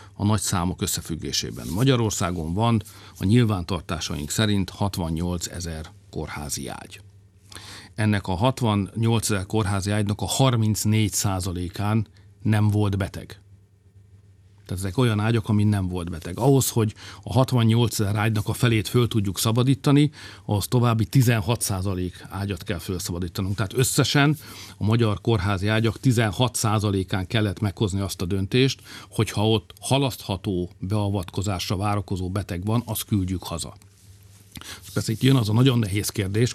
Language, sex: Hungarian, male